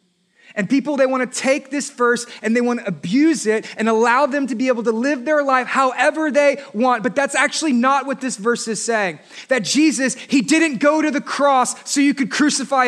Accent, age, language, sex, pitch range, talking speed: American, 20-39, English, male, 250-310 Hz, 225 wpm